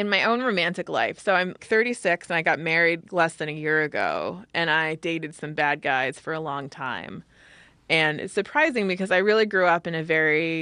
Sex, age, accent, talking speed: female, 20-39, American, 215 wpm